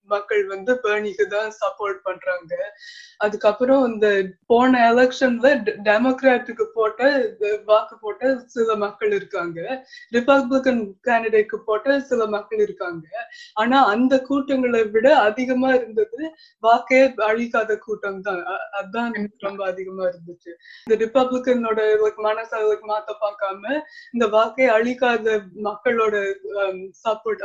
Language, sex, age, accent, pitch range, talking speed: Tamil, female, 20-39, native, 210-250 Hz, 105 wpm